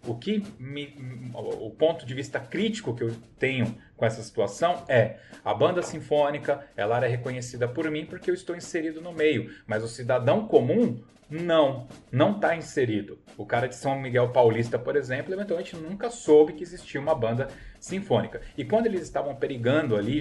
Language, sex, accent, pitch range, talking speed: Portuguese, male, Brazilian, 120-160 Hz, 175 wpm